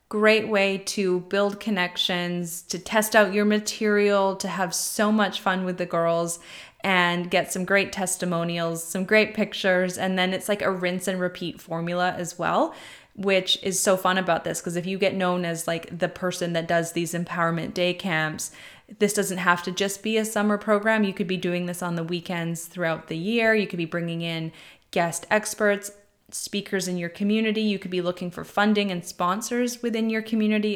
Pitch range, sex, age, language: 175-205 Hz, female, 20-39, English